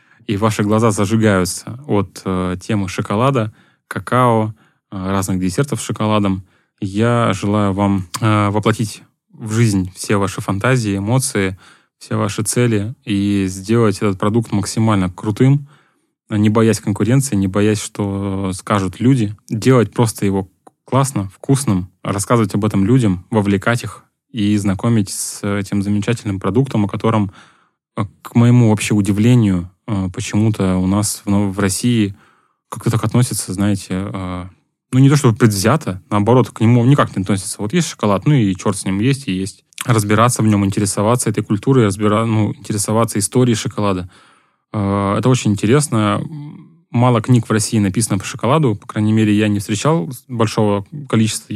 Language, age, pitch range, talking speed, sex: Russian, 10-29, 100-120 Hz, 145 wpm, male